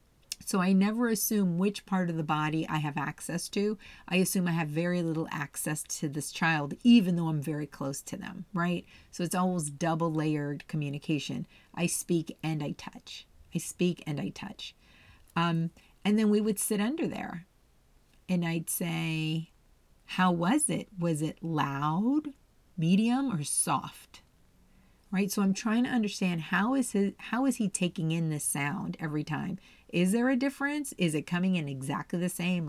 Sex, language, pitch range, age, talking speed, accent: female, English, 165-210 Hz, 40-59, 175 wpm, American